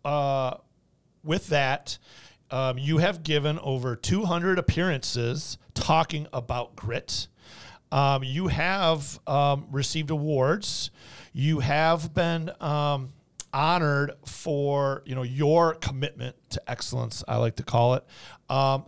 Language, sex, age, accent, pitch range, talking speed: English, male, 40-59, American, 130-155 Hz, 120 wpm